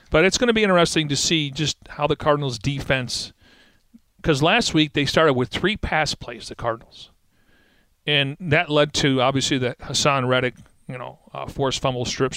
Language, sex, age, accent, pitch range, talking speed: English, male, 40-59, American, 125-150 Hz, 185 wpm